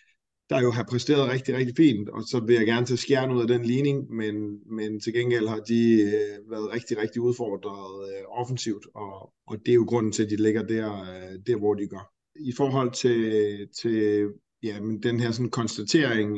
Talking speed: 185 wpm